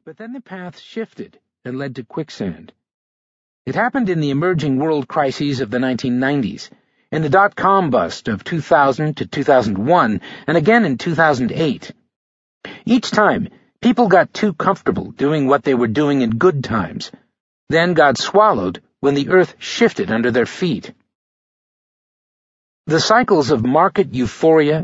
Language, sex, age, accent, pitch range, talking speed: English, male, 50-69, American, 130-190 Hz, 145 wpm